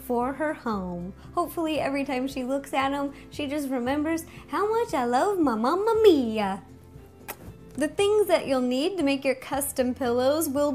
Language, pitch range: Chinese, 260-335 Hz